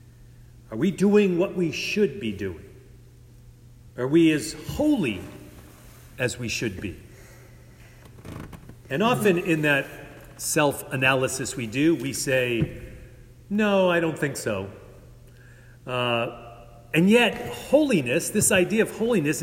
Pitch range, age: 120-170 Hz, 40-59